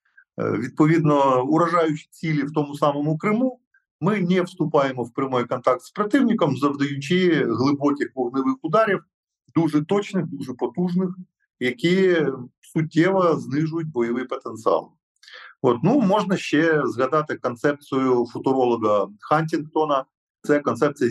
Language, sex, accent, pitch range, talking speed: Ukrainian, male, native, 130-180 Hz, 110 wpm